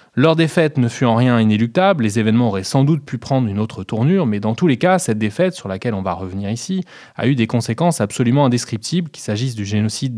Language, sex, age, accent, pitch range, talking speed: French, male, 20-39, French, 110-150 Hz, 235 wpm